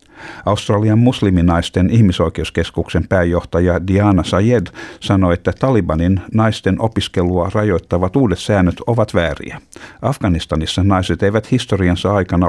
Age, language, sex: 50-69, Finnish, male